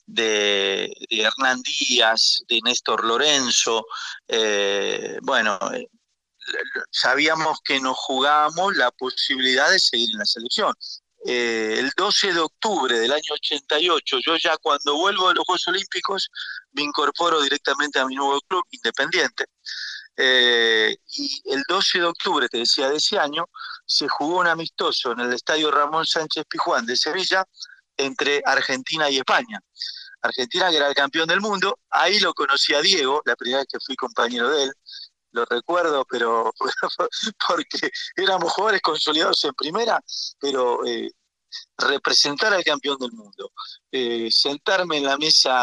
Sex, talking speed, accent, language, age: male, 150 wpm, Argentinian, Spanish, 40-59